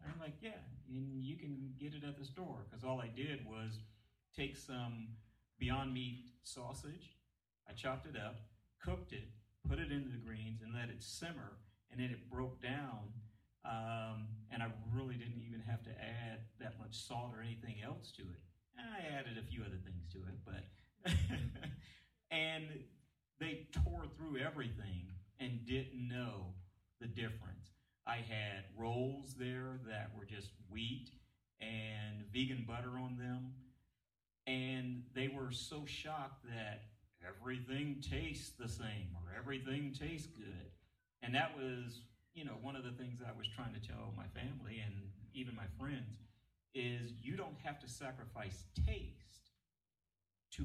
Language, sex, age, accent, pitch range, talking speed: English, male, 40-59, American, 105-130 Hz, 160 wpm